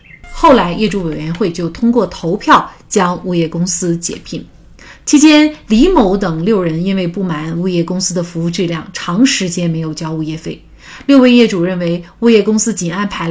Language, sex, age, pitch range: Chinese, female, 30-49, 175-235 Hz